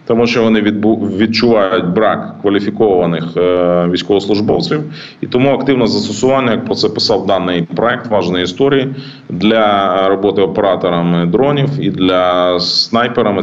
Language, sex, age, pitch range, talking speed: Ukrainian, male, 30-49, 90-120 Hz, 115 wpm